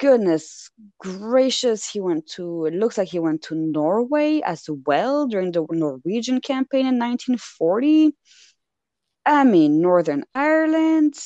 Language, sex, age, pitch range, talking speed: English, female, 20-39, 165-250 Hz, 130 wpm